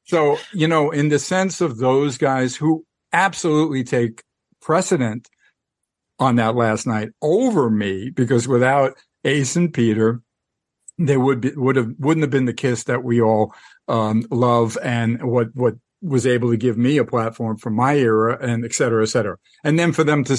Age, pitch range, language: 50-69, 115-135 Hz, English